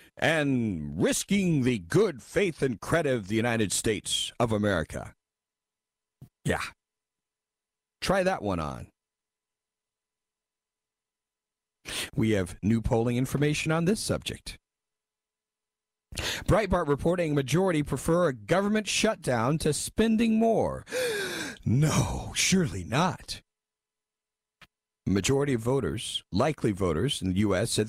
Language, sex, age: English, male, 50-69